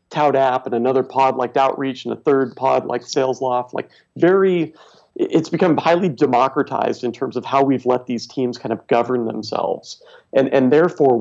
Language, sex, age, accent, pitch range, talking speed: English, male, 40-59, American, 125-145 Hz, 185 wpm